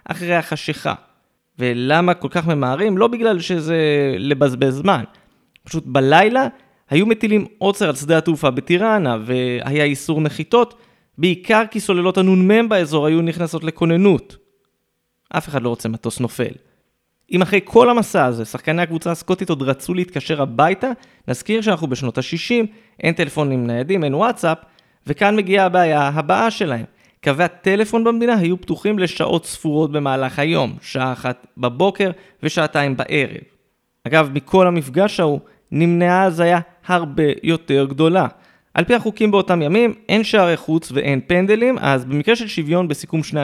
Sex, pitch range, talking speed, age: male, 145-195 Hz, 140 wpm, 30-49